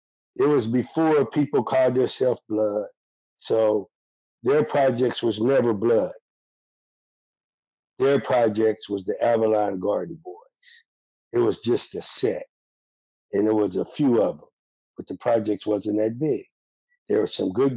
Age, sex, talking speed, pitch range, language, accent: 50-69, male, 140 wpm, 105-155 Hz, English, American